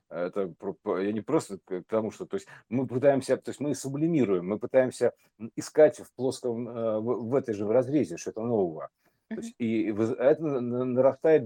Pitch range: 105-125 Hz